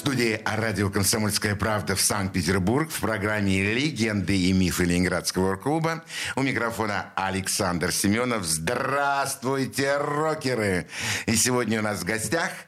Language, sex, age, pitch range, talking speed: Russian, male, 60-79, 115-165 Hz, 125 wpm